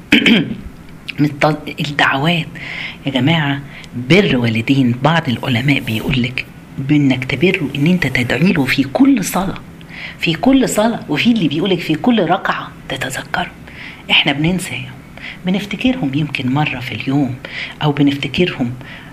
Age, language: 40-59, Arabic